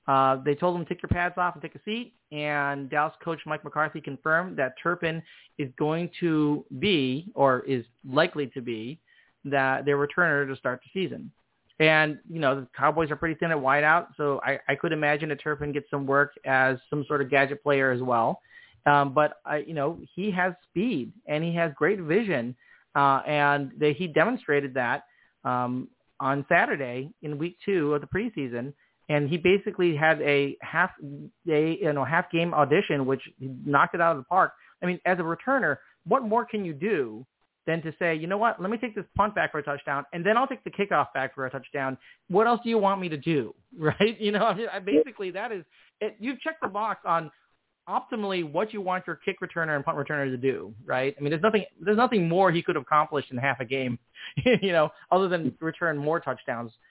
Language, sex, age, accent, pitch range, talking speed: English, male, 40-59, American, 140-180 Hz, 215 wpm